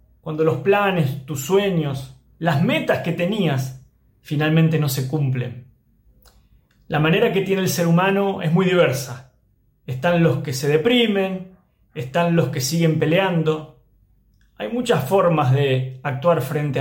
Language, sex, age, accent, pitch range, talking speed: Spanish, male, 30-49, Argentinian, 130-165 Hz, 140 wpm